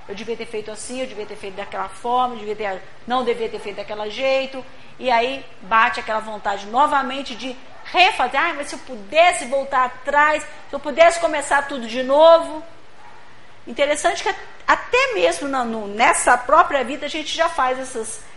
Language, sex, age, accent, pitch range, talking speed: Portuguese, female, 50-69, Brazilian, 225-305 Hz, 185 wpm